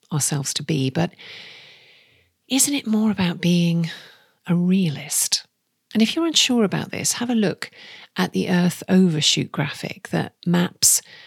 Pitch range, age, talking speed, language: 165-205 Hz, 40-59, 145 wpm, English